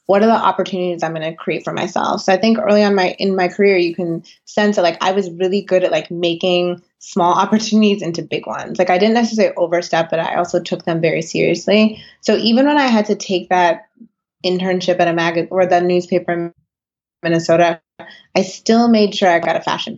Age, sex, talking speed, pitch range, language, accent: 20-39, female, 220 wpm, 170-190 Hz, English, American